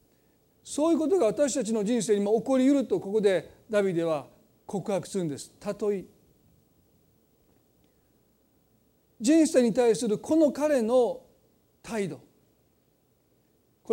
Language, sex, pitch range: Japanese, male, 180-235 Hz